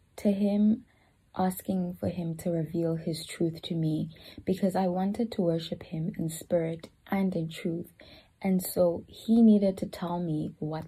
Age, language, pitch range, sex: 20-39, English, 165-205 Hz, female